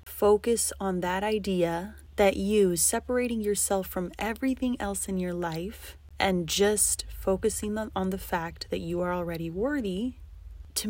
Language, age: English, 20-39